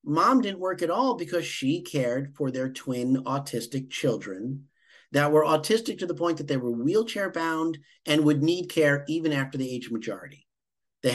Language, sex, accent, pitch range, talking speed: English, male, American, 130-170 Hz, 190 wpm